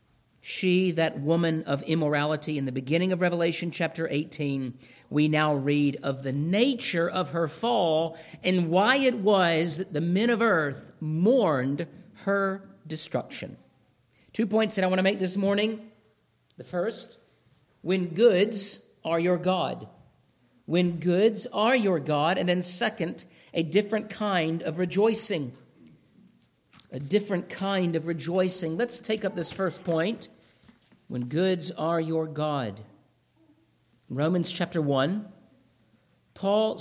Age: 50-69